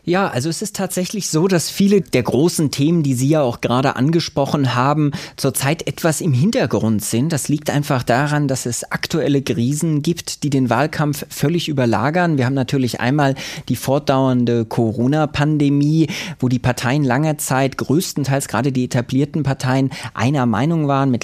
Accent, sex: German, male